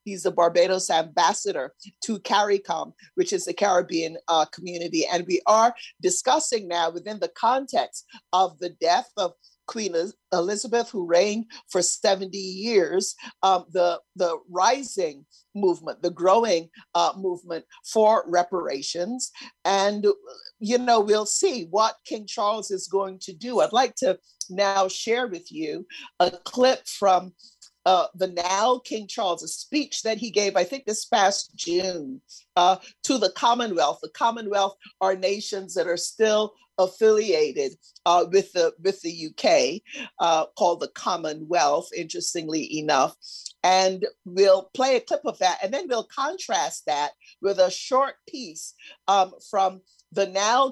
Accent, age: American, 50-69